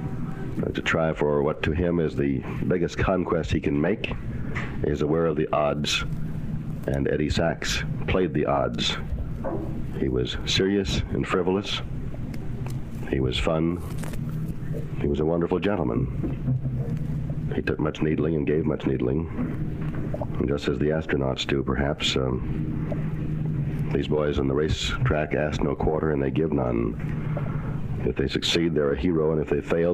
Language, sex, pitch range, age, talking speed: English, male, 75-110 Hz, 60-79, 150 wpm